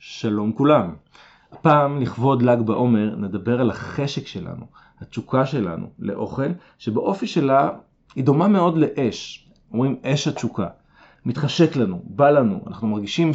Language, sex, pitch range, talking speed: Hebrew, male, 115-150 Hz, 125 wpm